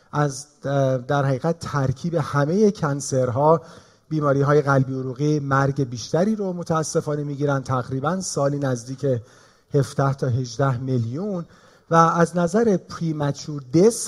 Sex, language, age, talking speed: male, Persian, 40-59, 110 wpm